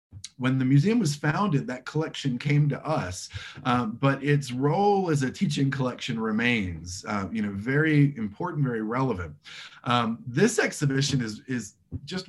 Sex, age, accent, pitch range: male, 30-49, American, 120-150 Hz